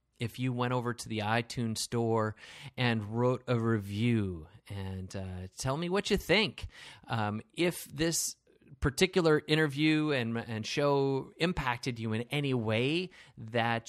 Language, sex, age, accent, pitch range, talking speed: English, male, 30-49, American, 110-135 Hz, 145 wpm